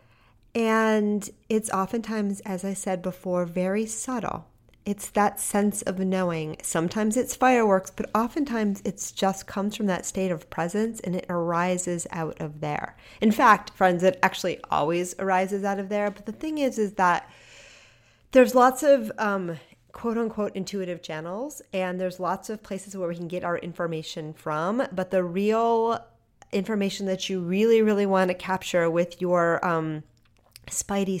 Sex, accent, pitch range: female, American, 170-205 Hz